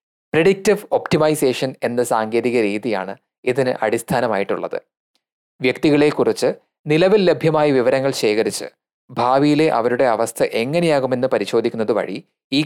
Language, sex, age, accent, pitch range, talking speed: Malayalam, male, 30-49, native, 120-160 Hz, 90 wpm